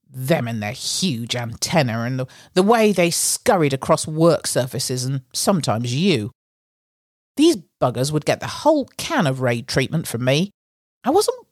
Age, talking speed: 50-69, 160 wpm